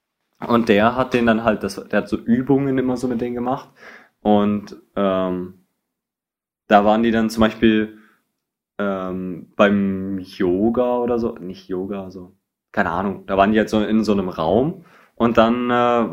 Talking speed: 175 wpm